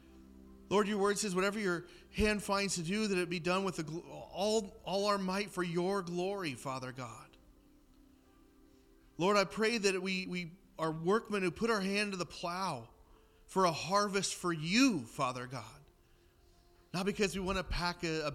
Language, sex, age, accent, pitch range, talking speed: English, male, 40-59, American, 160-200 Hz, 180 wpm